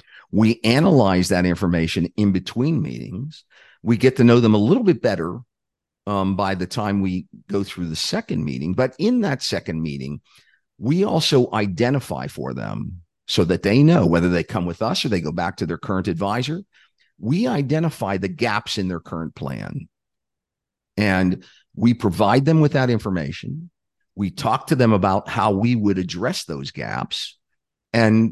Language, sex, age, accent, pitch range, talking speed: English, male, 50-69, American, 95-135 Hz, 170 wpm